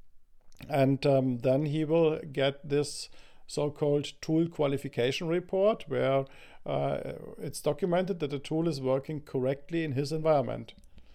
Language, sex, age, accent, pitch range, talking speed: English, male, 50-69, German, 125-150 Hz, 130 wpm